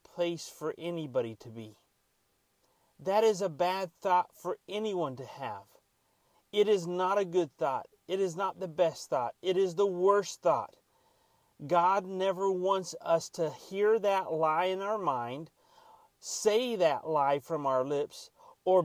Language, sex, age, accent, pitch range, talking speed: English, male, 40-59, American, 150-190 Hz, 155 wpm